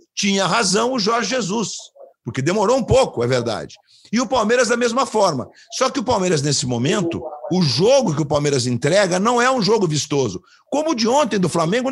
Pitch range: 170-245 Hz